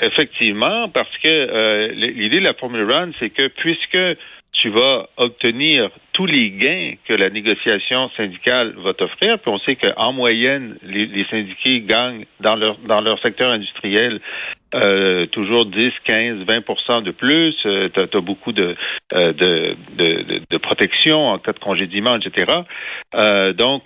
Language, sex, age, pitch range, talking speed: French, male, 50-69, 105-160 Hz, 160 wpm